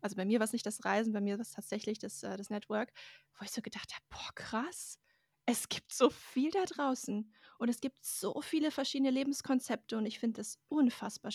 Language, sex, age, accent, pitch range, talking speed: German, female, 20-39, German, 210-255 Hz, 220 wpm